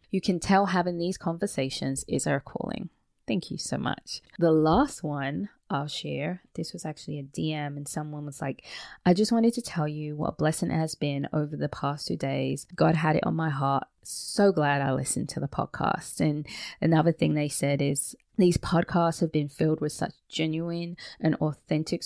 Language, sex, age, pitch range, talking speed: English, female, 20-39, 145-175 Hz, 195 wpm